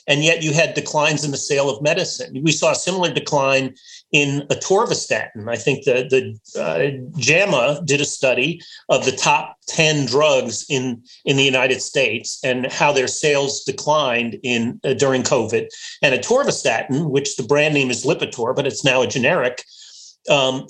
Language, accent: English, American